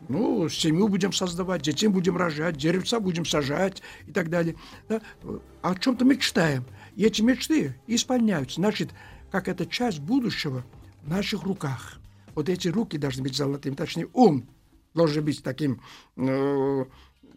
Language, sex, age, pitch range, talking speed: Russian, male, 60-79, 140-195 Hz, 140 wpm